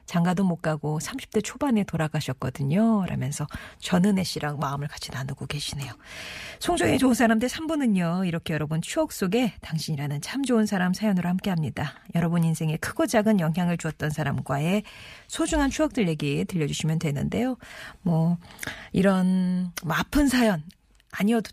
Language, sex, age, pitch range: Korean, female, 40-59, 160-220 Hz